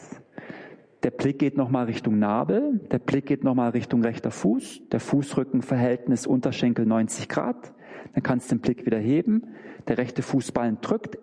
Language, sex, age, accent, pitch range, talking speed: German, male, 40-59, German, 130-205 Hz, 155 wpm